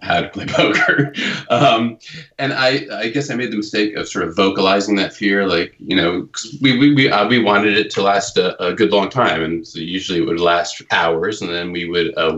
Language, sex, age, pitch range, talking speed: English, male, 30-49, 85-115 Hz, 235 wpm